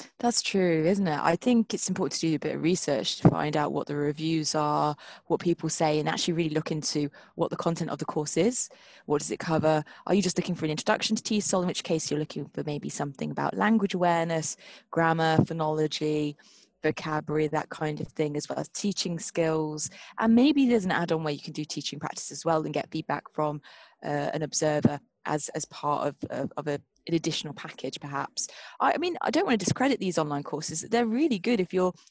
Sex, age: female, 20-39